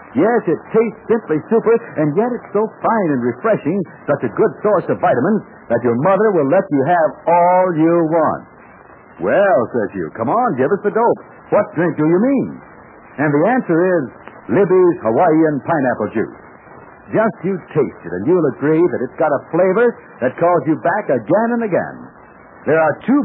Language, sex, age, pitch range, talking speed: English, male, 60-79, 155-225 Hz, 185 wpm